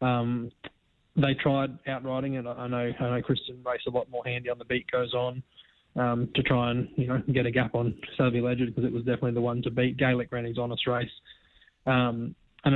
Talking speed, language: 230 wpm, English